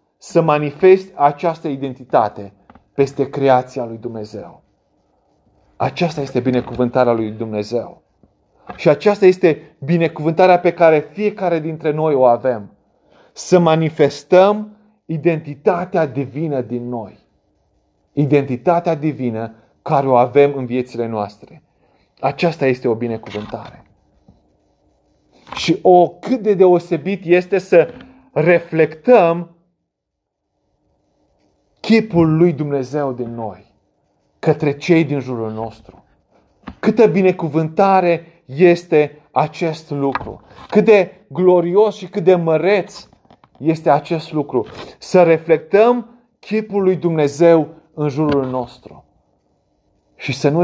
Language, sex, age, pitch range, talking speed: Romanian, male, 30-49, 125-175 Hz, 100 wpm